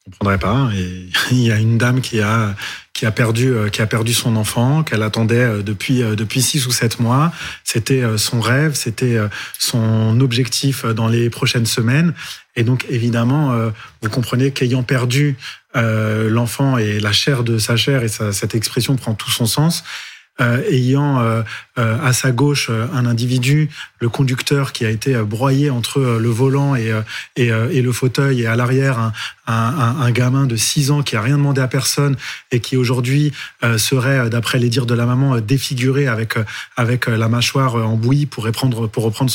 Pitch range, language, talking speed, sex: 115-140 Hz, French, 170 wpm, male